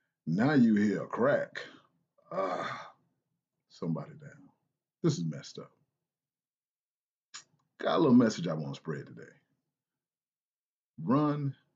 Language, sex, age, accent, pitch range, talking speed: English, male, 40-59, American, 95-150 Hz, 115 wpm